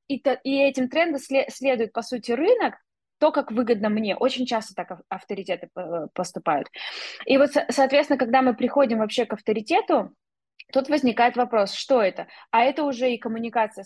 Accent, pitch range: native, 205-255 Hz